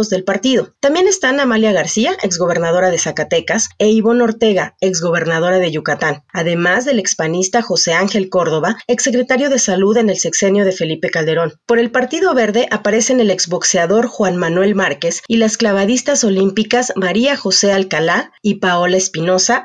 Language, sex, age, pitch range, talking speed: Spanish, female, 40-59, 180-235 Hz, 155 wpm